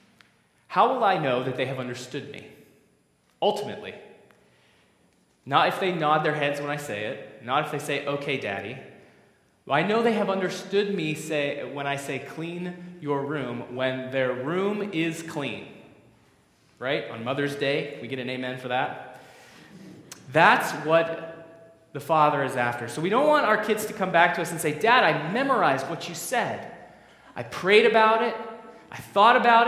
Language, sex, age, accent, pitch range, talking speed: English, male, 20-39, American, 140-225 Hz, 175 wpm